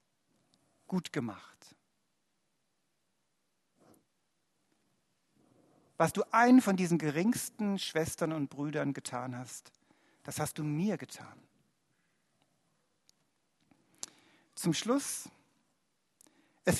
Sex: male